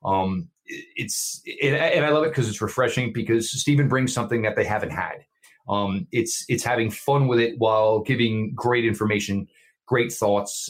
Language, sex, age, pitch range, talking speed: English, male, 30-49, 100-115 Hz, 170 wpm